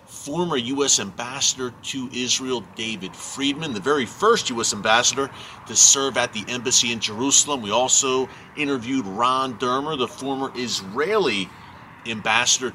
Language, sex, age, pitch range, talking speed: English, male, 40-59, 115-140 Hz, 130 wpm